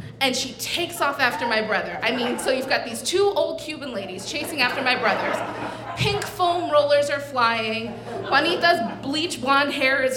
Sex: female